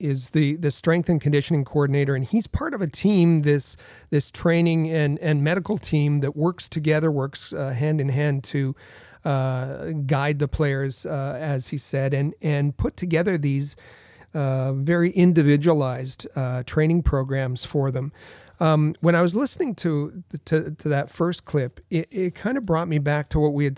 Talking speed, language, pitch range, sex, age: 180 wpm, English, 140-165 Hz, male, 40-59